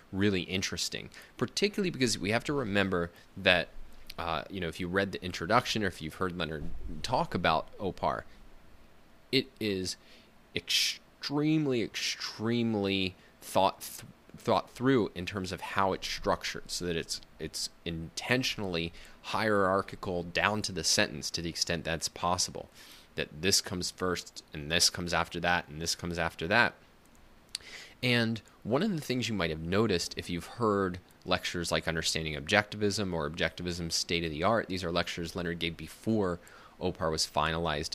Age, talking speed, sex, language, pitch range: 20-39, 150 wpm, male, English, 85-105 Hz